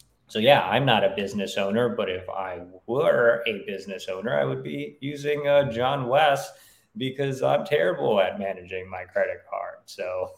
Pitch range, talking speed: 120-150 Hz, 175 wpm